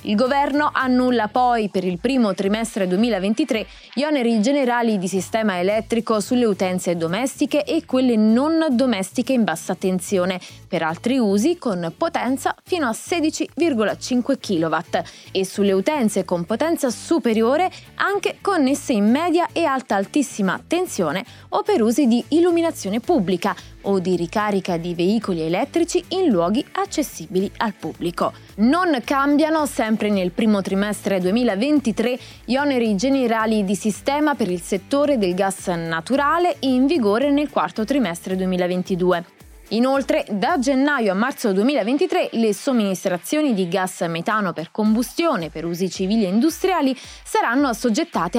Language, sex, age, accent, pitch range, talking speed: Italian, female, 20-39, native, 195-285 Hz, 135 wpm